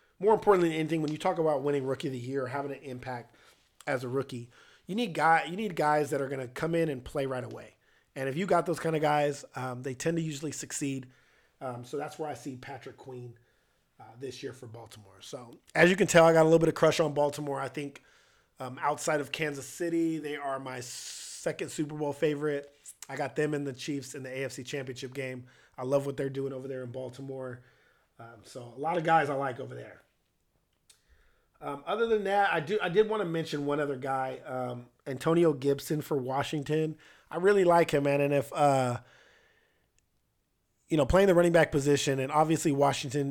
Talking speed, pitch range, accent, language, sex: 215 wpm, 130-160 Hz, American, English, male